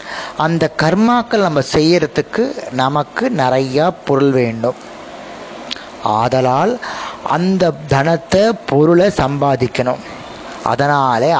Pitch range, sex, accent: 135-185 Hz, male, native